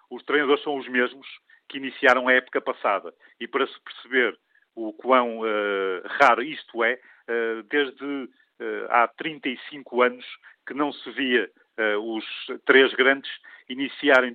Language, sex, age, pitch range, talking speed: Portuguese, male, 50-69, 115-140 Hz, 130 wpm